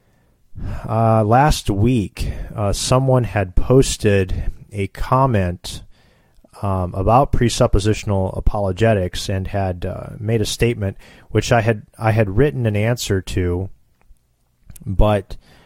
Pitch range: 95-115 Hz